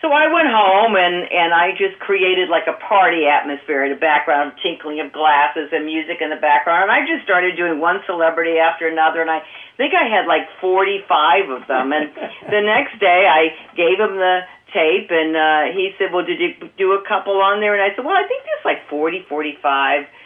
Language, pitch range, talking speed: English, 155-195 Hz, 215 wpm